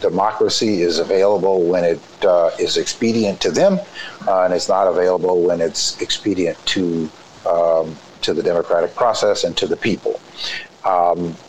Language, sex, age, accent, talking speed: English, male, 60-79, American, 150 wpm